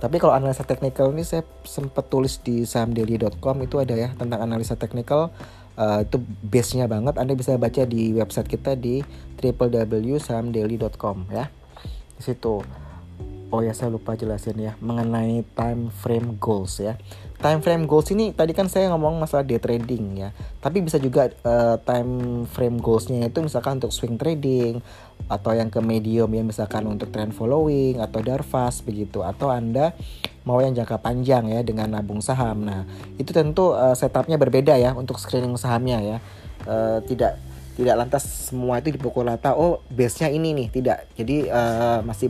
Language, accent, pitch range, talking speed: Indonesian, native, 110-130 Hz, 165 wpm